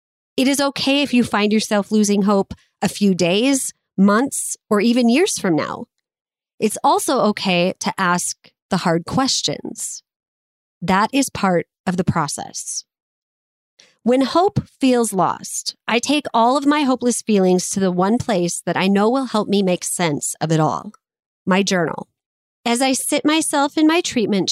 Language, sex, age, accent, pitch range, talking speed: English, female, 30-49, American, 180-235 Hz, 165 wpm